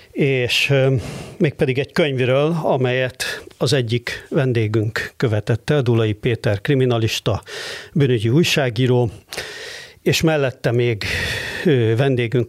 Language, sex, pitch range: Hungarian, male, 115-145 Hz